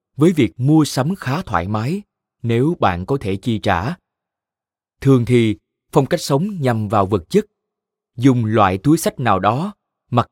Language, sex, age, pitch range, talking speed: Vietnamese, male, 20-39, 105-155 Hz, 170 wpm